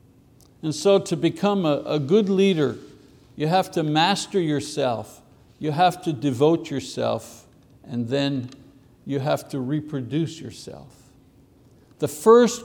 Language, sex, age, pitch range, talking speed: English, male, 60-79, 150-200 Hz, 130 wpm